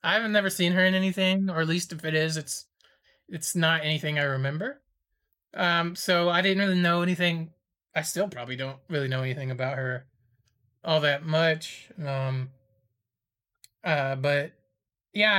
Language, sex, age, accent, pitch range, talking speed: English, male, 20-39, American, 145-195 Hz, 165 wpm